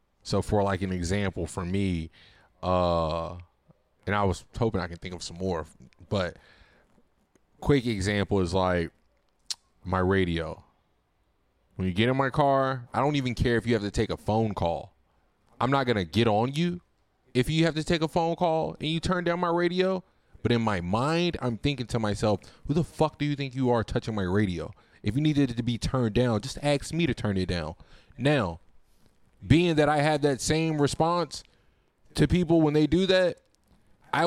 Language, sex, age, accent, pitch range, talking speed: English, male, 20-39, American, 100-150 Hz, 200 wpm